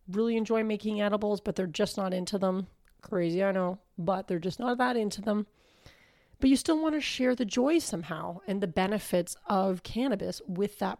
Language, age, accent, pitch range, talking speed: English, 30-49, American, 185-225 Hz, 195 wpm